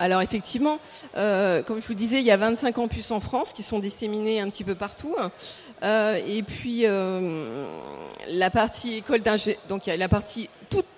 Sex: female